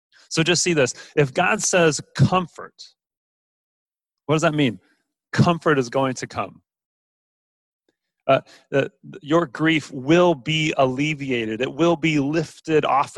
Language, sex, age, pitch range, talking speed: English, male, 30-49, 125-160 Hz, 130 wpm